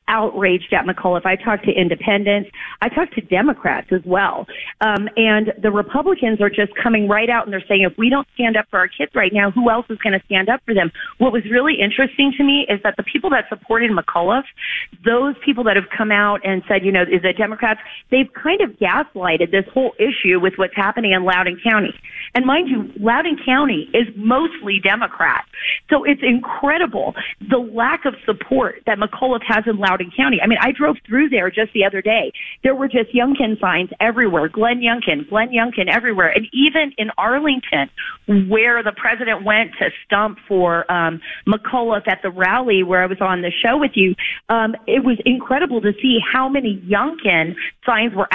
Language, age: English, 40-59